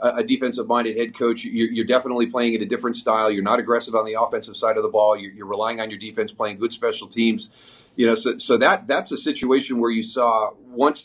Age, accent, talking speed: 40-59, American, 230 wpm